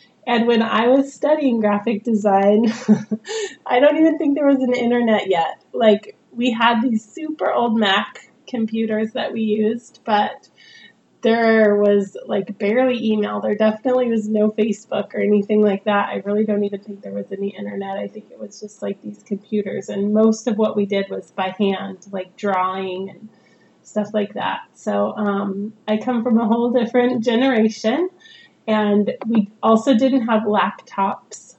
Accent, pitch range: American, 205-235 Hz